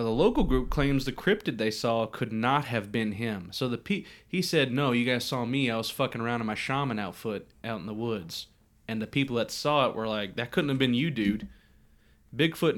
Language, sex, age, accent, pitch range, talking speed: English, male, 30-49, American, 110-140 Hz, 235 wpm